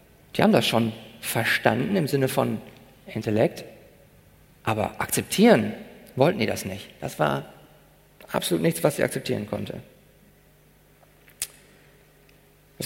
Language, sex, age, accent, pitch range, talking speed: German, male, 50-69, German, 135-195 Hz, 110 wpm